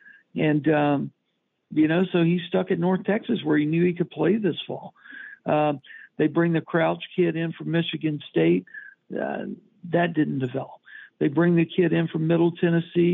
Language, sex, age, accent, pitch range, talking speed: English, male, 60-79, American, 150-195 Hz, 185 wpm